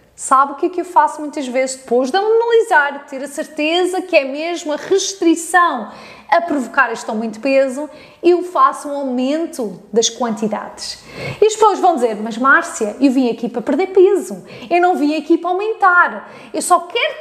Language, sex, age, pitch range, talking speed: Portuguese, female, 20-39, 255-360 Hz, 195 wpm